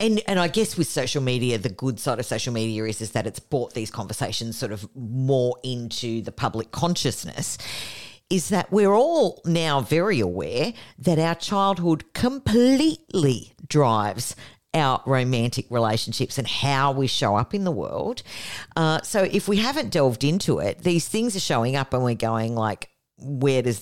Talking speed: 175 wpm